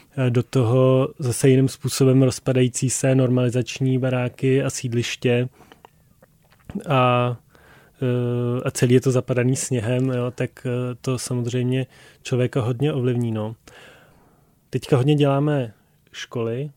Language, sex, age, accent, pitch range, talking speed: Czech, male, 20-39, native, 125-135 Hz, 110 wpm